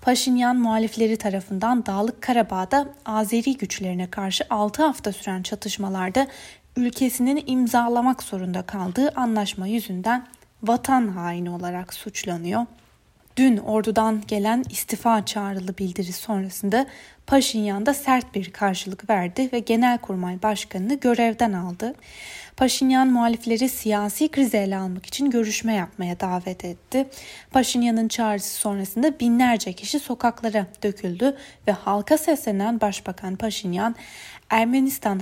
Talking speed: 110 wpm